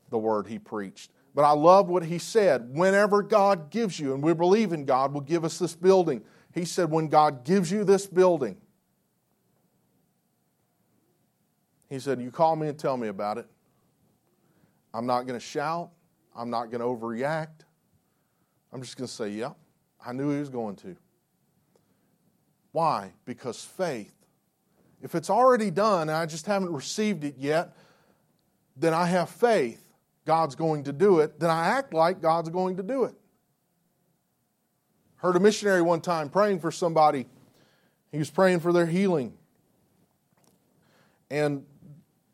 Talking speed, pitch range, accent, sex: 155 wpm, 145-185 Hz, American, male